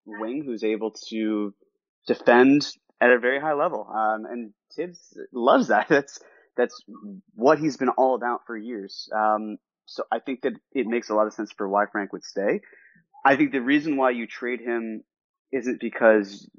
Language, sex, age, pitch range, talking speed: English, male, 20-39, 105-125 Hz, 180 wpm